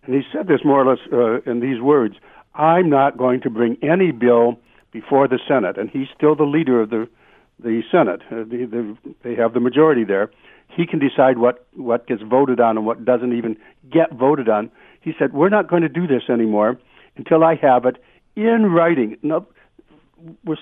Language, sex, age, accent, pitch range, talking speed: English, male, 60-79, American, 120-155 Hz, 205 wpm